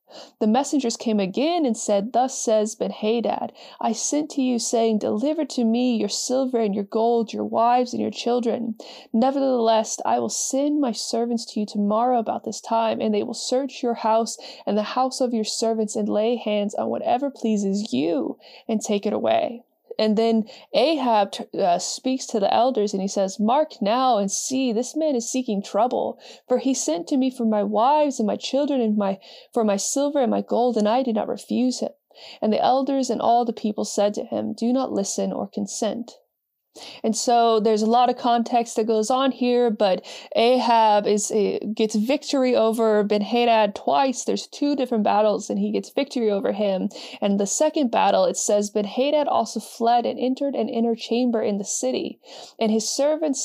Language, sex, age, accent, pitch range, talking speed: English, female, 20-39, American, 215-255 Hz, 190 wpm